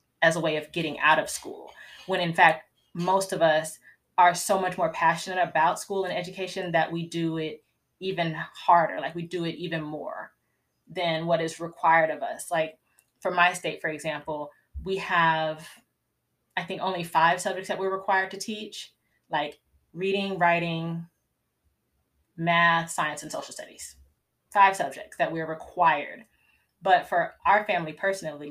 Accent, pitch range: American, 155-185 Hz